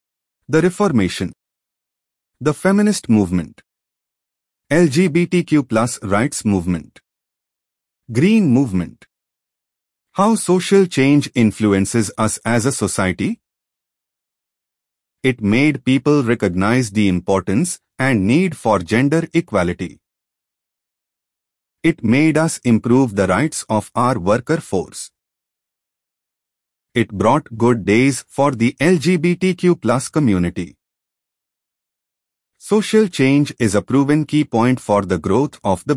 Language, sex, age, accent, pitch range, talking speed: English, male, 30-49, Indian, 100-155 Hz, 100 wpm